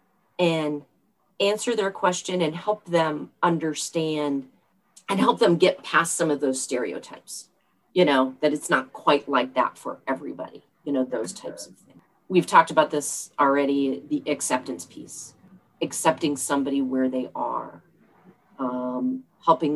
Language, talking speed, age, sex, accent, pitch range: English, 145 wpm, 40-59, female, American, 145-220 Hz